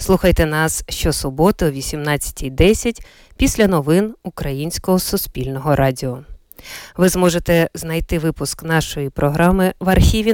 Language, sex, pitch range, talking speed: Ukrainian, female, 150-205 Hz, 105 wpm